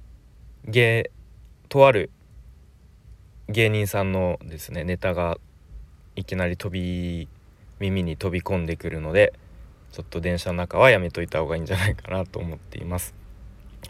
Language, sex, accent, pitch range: Japanese, male, native, 85-105 Hz